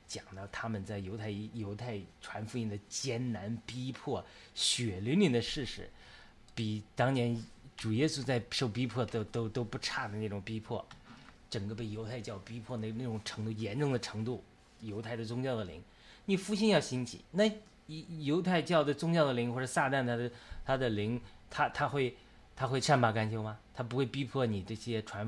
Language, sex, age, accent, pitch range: Chinese, male, 30-49, native, 105-125 Hz